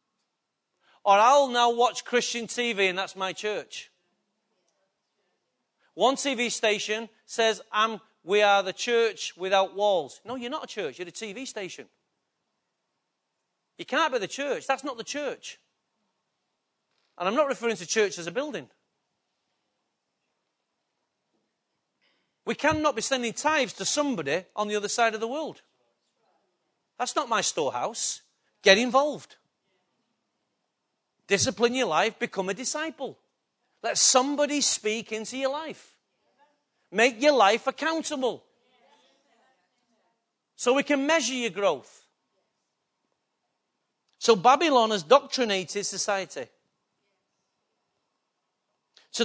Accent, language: British, English